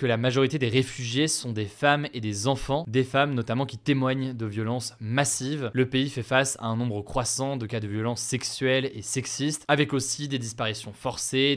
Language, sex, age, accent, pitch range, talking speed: French, male, 20-39, French, 115-140 Hz, 200 wpm